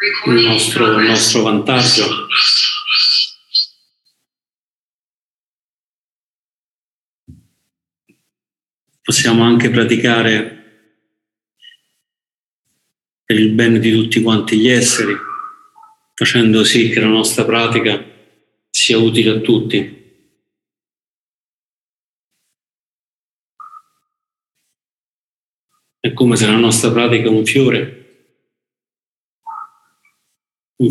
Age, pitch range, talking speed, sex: 50-69, 110-135 Hz, 70 wpm, male